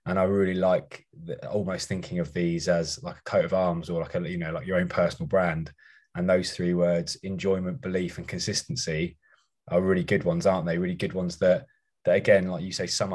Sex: male